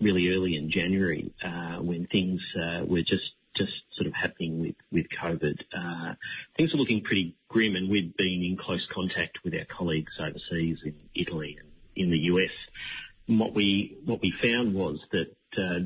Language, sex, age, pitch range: English, male, 40-59, 85-100 Hz